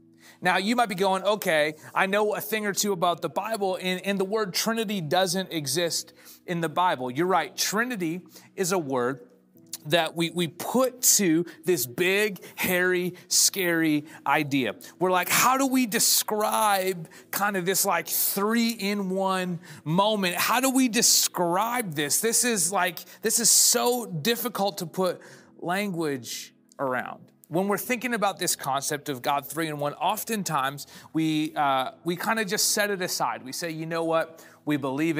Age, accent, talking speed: 30-49, American, 165 wpm